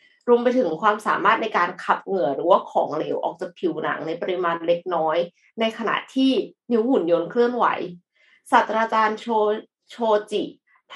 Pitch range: 185-240 Hz